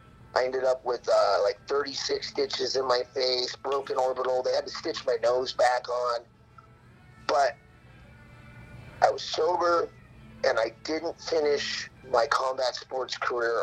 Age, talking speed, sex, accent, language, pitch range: 30-49, 145 wpm, male, American, English, 120-150 Hz